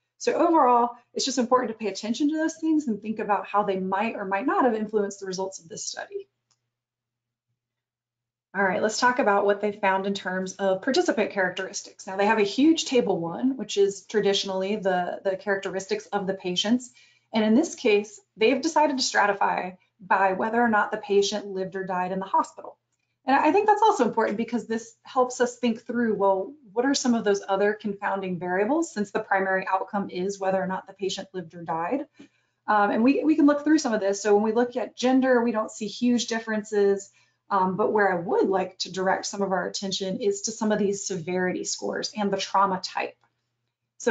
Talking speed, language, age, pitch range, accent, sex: 210 wpm, English, 30-49, 190-240 Hz, American, female